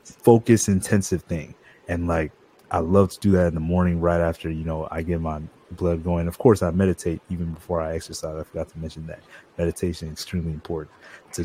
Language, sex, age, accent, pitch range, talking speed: English, male, 30-49, American, 85-100 Hz, 210 wpm